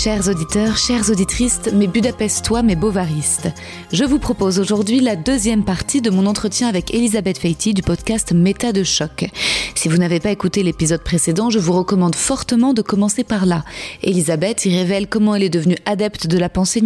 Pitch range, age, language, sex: 180-230 Hz, 30-49, French, female